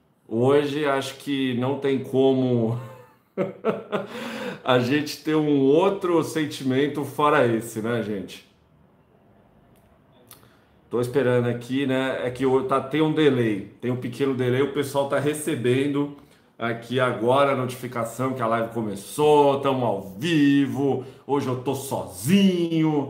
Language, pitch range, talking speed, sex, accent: Portuguese, 120-145 Hz, 130 wpm, male, Brazilian